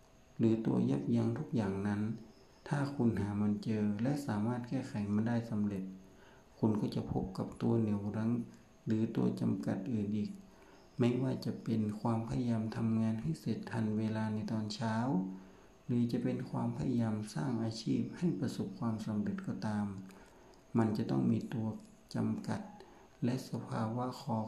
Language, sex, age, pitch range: Thai, male, 60-79, 105-120 Hz